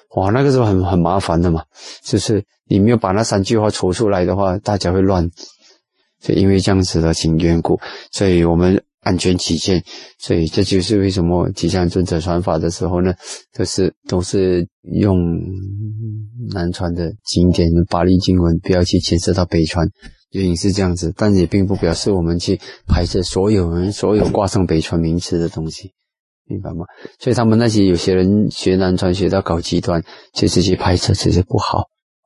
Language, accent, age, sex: Chinese, native, 20-39, male